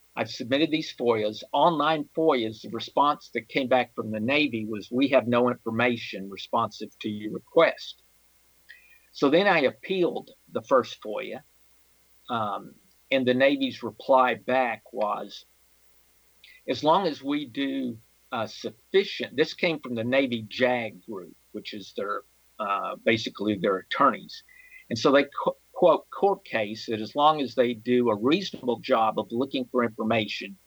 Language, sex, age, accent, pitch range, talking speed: English, male, 50-69, American, 110-155 Hz, 150 wpm